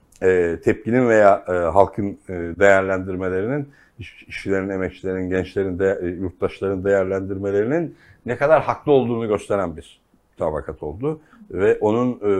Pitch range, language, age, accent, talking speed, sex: 95-130 Hz, Turkish, 60-79, native, 100 wpm, male